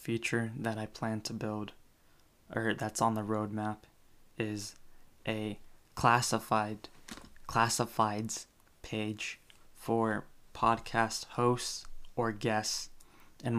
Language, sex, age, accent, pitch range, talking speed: English, male, 20-39, American, 110-115 Hz, 95 wpm